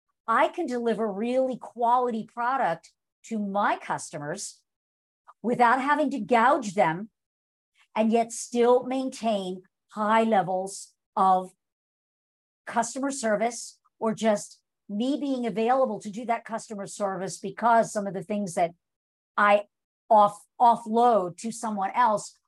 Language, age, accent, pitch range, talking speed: English, 50-69, American, 205-255 Hz, 120 wpm